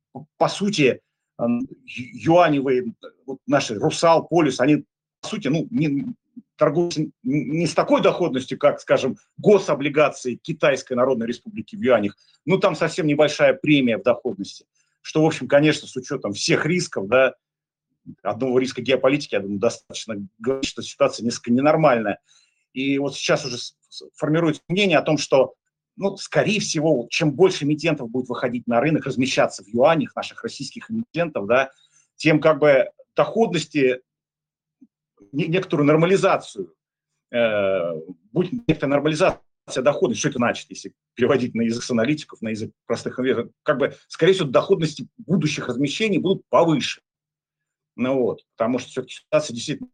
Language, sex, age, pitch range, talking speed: Turkish, male, 50-69, 125-170 Hz, 140 wpm